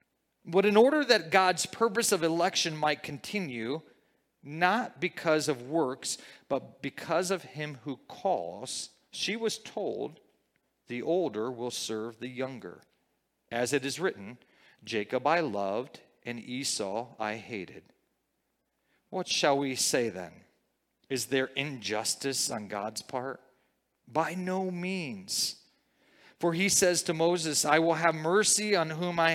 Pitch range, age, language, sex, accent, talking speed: 135-185 Hz, 40-59, English, male, American, 135 wpm